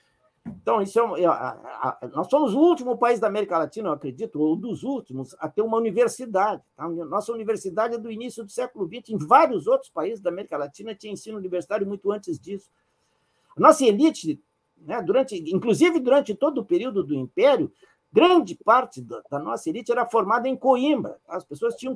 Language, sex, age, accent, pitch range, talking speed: Portuguese, male, 60-79, Brazilian, 165-260 Hz, 180 wpm